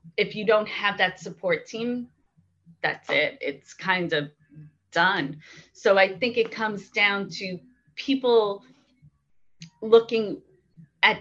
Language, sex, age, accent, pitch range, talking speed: English, female, 30-49, American, 170-210 Hz, 125 wpm